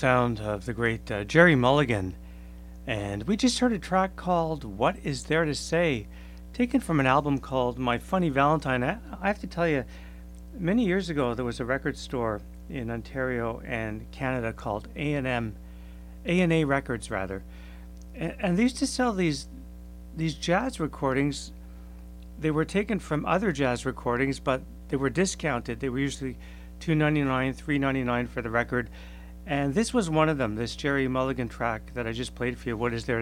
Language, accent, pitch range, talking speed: English, American, 105-155 Hz, 180 wpm